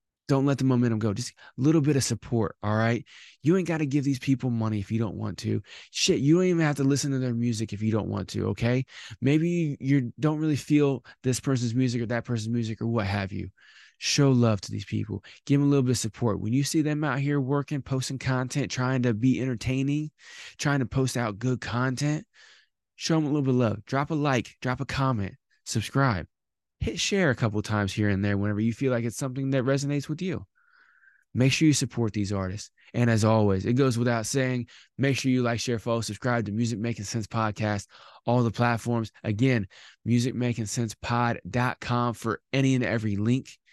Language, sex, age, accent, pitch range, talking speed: English, male, 20-39, American, 105-135 Hz, 215 wpm